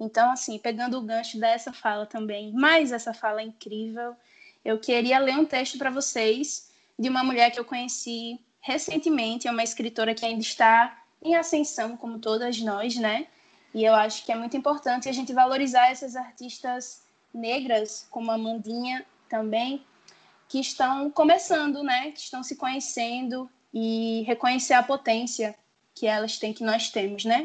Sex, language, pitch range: female, Portuguese, 225-265 Hz